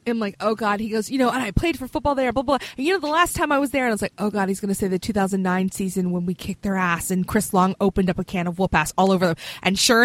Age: 20-39